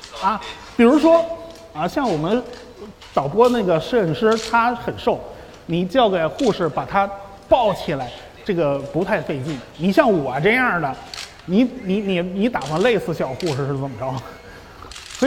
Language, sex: Chinese, male